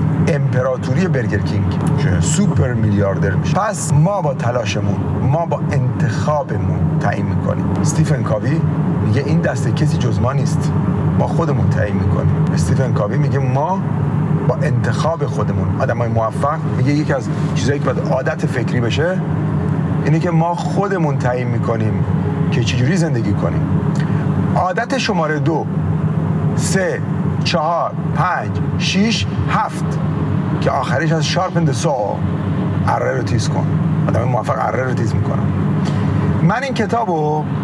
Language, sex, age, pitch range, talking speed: Persian, male, 40-59, 135-165 Hz, 125 wpm